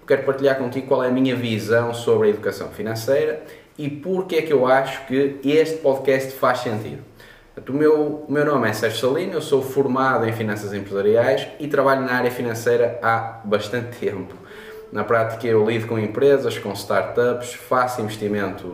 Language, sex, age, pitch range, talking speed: Portuguese, male, 10-29, 115-140 Hz, 175 wpm